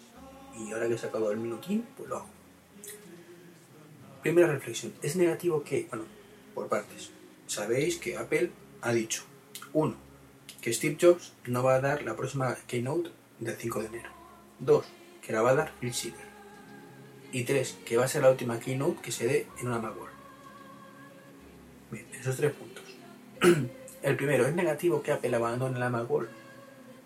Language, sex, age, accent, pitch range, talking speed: Spanish, male, 40-59, Spanish, 115-155 Hz, 160 wpm